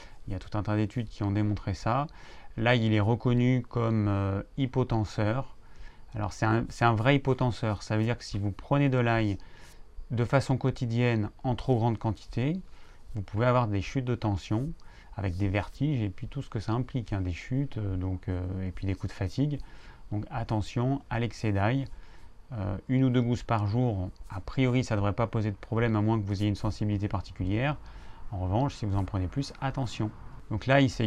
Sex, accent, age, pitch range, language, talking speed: male, French, 30-49, 100-125 Hz, French, 215 wpm